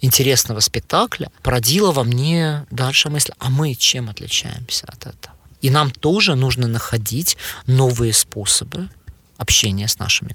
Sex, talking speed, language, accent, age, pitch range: male, 135 wpm, Ukrainian, native, 20-39, 115-135 Hz